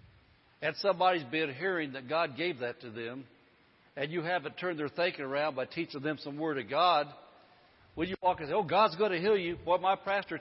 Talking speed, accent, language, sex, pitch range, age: 220 wpm, American, English, male, 150-185 Hz, 60-79